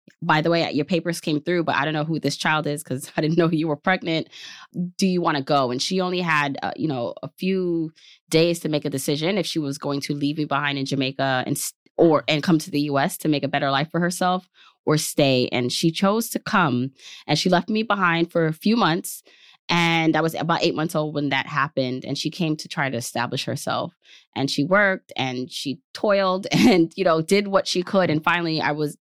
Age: 20-39